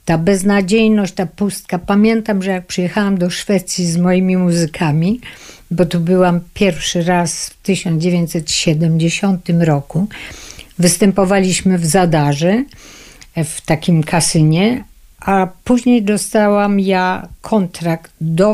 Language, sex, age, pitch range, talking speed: Polish, female, 50-69, 170-230 Hz, 105 wpm